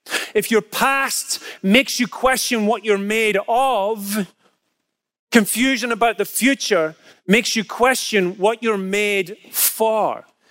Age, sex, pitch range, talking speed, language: 30-49, male, 190-235 Hz, 120 wpm, English